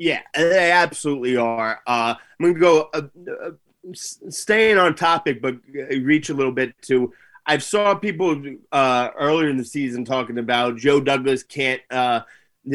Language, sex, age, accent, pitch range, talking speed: English, male, 30-49, American, 125-160 Hz, 155 wpm